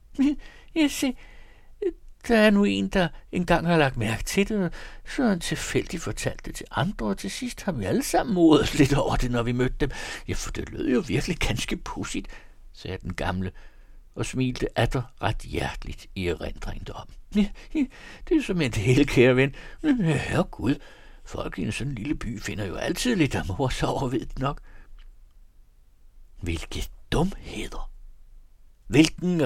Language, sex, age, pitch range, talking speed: Danish, male, 60-79, 95-150 Hz, 165 wpm